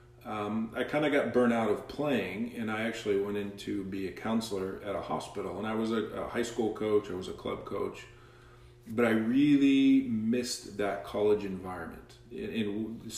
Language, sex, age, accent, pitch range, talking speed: English, male, 40-59, American, 95-115 Hz, 195 wpm